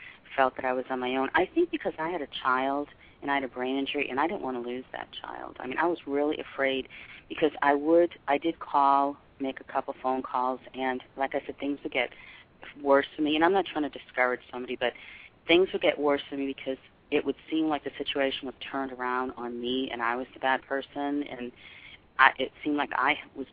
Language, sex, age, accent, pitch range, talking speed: English, female, 40-59, American, 125-145 Hz, 240 wpm